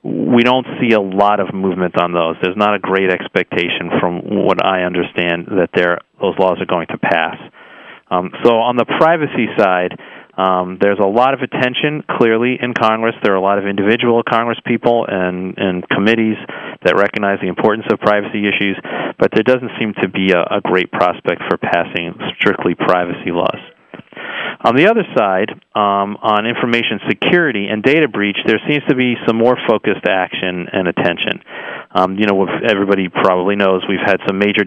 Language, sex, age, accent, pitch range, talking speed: English, male, 40-59, American, 95-115 Hz, 180 wpm